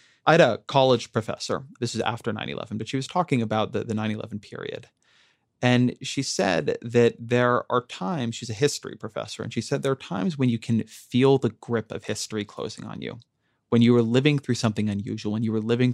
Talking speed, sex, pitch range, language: 215 wpm, male, 110-135 Hz, English